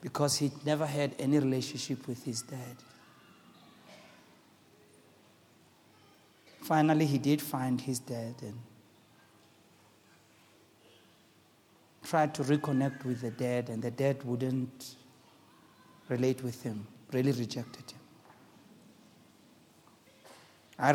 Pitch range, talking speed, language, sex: 120-150 Hz, 95 wpm, English, male